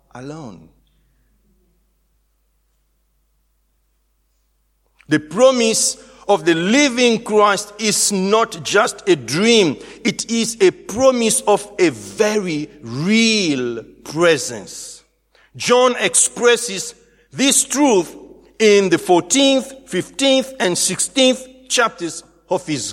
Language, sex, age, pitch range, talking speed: English, male, 60-79, 180-270 Hz, 90 wpm